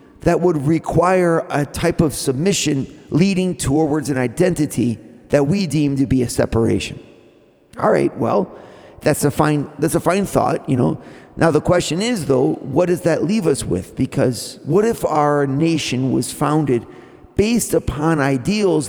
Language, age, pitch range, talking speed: English, 50-69, 135-180 Hz, 160 wpm